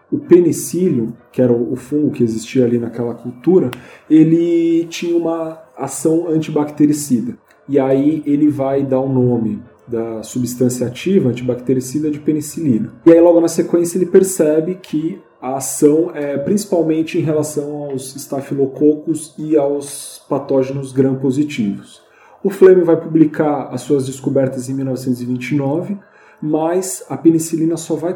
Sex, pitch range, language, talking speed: male, 130-160 Hz, Portuguese, 135 wpm